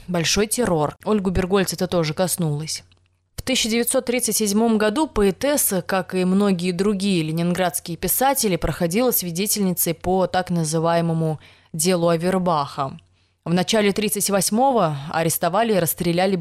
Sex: female